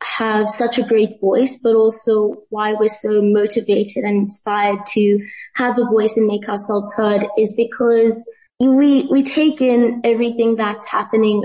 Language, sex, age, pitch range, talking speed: English, female, 20-39, 210-235 Hz, 155 wpm